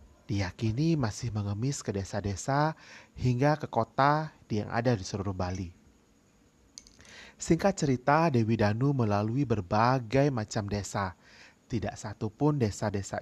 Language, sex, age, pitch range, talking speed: Indonesian, male, 30-49, 100-130 Hz, 110 wpm